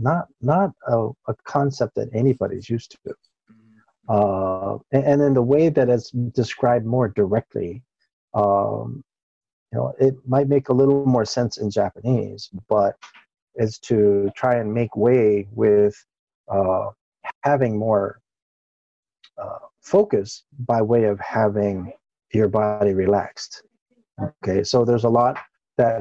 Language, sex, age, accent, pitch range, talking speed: English, male, 50-69, American, 105-125 Hz, 135 wpm